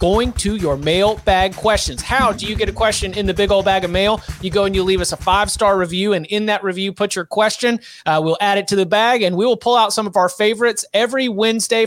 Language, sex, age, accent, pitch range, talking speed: English, male, 30-49, American, 175-210 Hz, 265 wpm